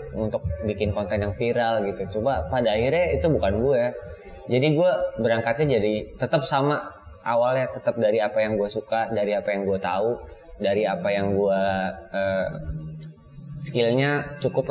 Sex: male